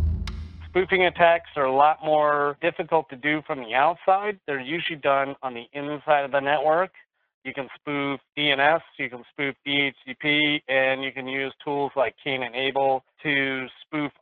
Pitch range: 130-155 Hz